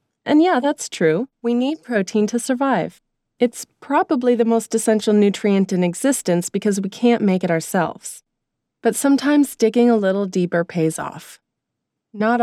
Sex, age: female, 30-49